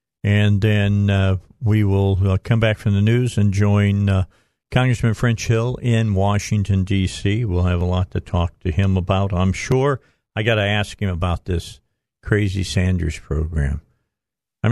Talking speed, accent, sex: 170 wpm, American, male